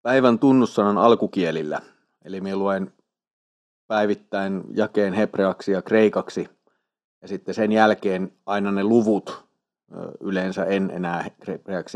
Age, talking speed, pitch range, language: 30-49, 110 wpm, 95-110 Hz, Finnish